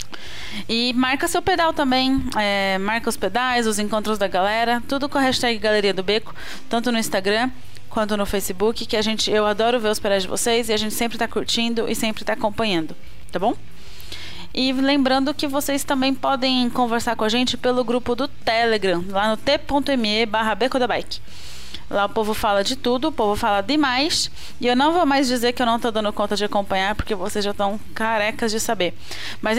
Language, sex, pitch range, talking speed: Portuguese, female, 205-245 Hz, 200 wpm